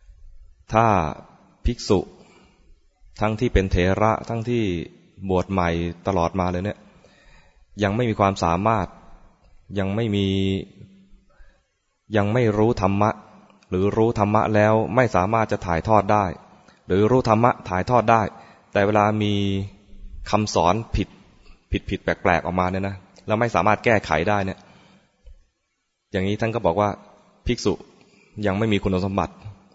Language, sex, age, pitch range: English, male, 20-39, 90-105 Hz